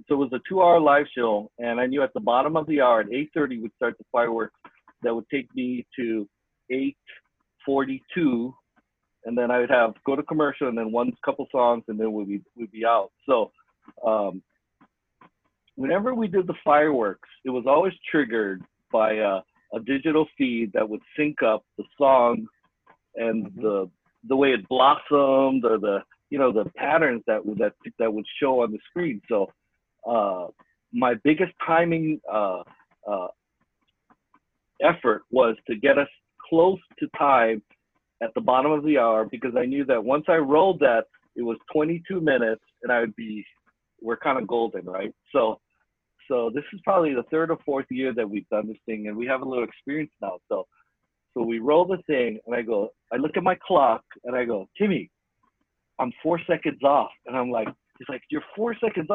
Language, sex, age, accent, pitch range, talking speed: English, male, 50-69, American, 115-160 Hz, 190 wpm